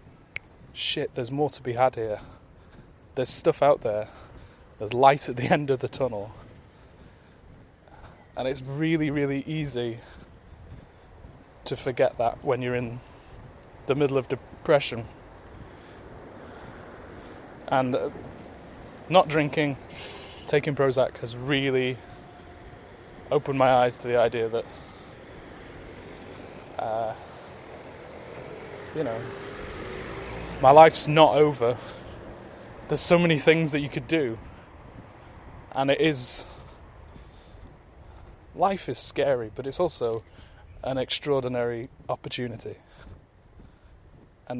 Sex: male